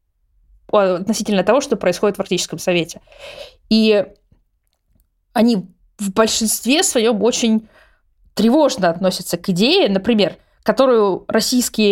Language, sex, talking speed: Russian, female, 100 wpm